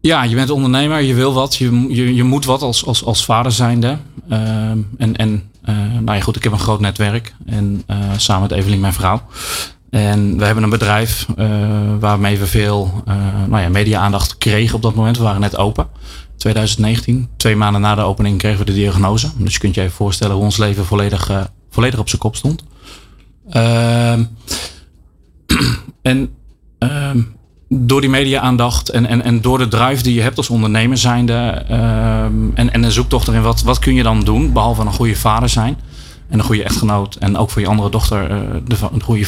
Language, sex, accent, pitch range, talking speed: Dutch, male, Dutch, 100-120 Hz, 200 wpm